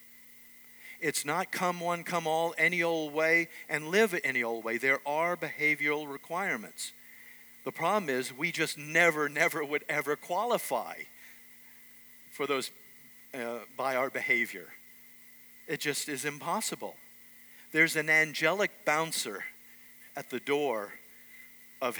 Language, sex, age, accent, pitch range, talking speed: English, male, 50-69, American, 135-165 Hz, 125 wpm